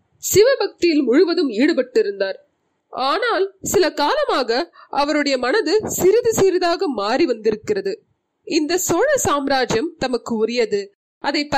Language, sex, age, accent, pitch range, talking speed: Tamil, female, 20-39, native, 255-385 Hz, 50 wpm